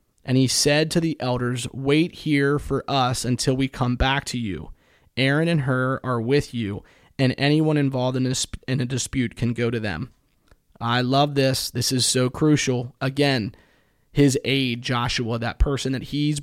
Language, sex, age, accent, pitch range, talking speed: English, male, 30-49, American, 125-140 Hz, 180 wpm